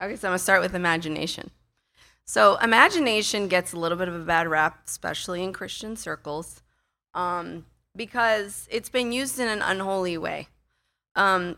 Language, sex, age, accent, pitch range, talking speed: English, female, 30-49, American, 160-200 Hz, 160 wpm